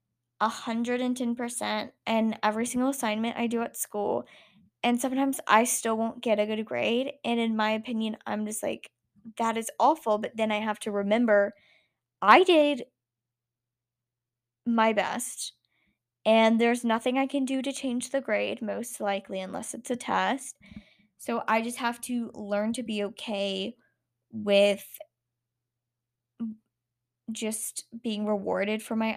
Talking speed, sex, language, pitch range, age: 150 wpm, female, English, 205-245 Hz, 10-29